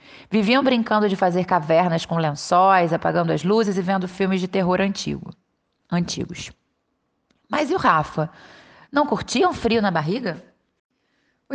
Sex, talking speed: female, 135 wpm